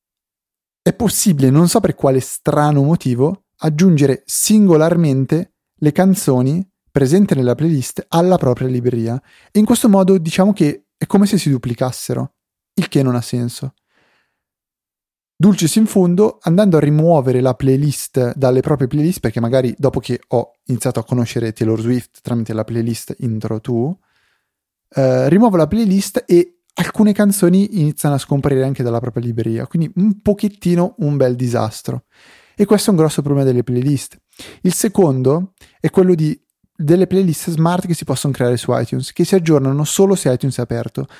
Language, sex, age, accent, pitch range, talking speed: Italian, male, 30-49, native, 125-180 Hz, 160 wpm